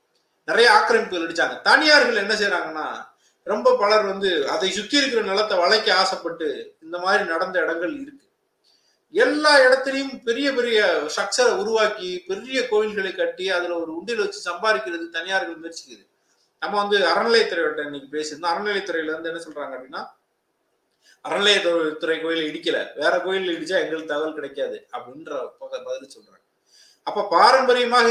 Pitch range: 170-275 Hz